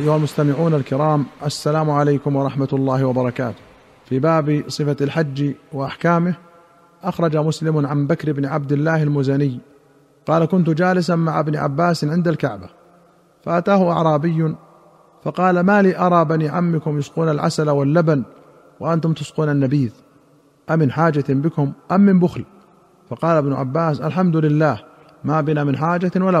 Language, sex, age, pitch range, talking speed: Arabic, male, 40-59, 140-165 Hz, 135 wpm